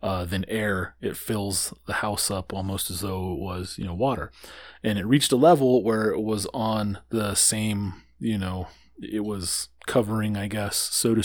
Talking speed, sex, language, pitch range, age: 190 wpm, male, English, 95-110 Hz, 20-39